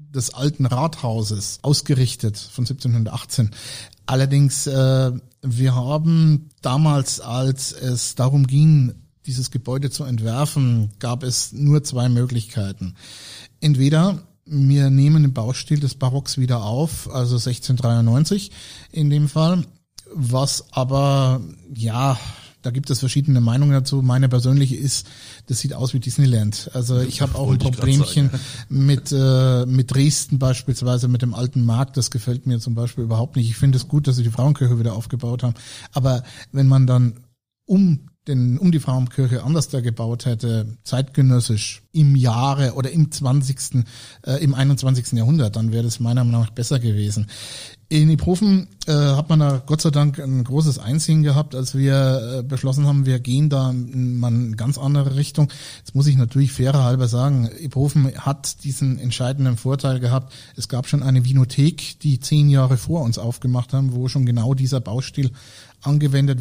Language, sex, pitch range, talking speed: German, male, 125-140 Hz, 160 wpm